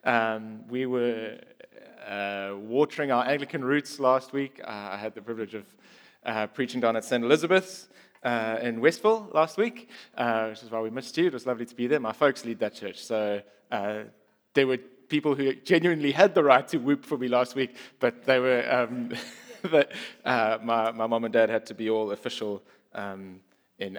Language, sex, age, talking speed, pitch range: English, male, 20-39, 200 wpm, 115-150 Hz